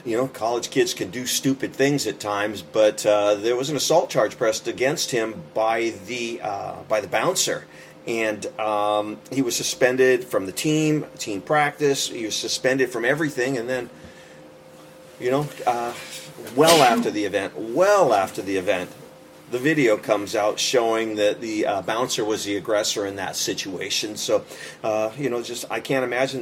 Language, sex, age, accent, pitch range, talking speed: English, male, 30-49, American, 105-135 Hz, 175 wpm